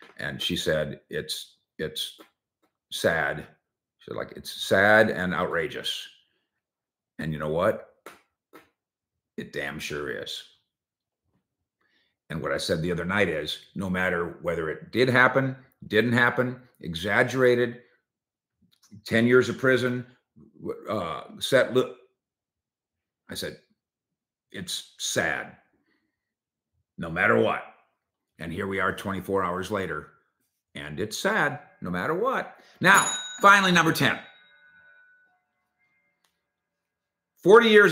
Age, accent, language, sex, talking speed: 50-69, American, English, male, 110 wpm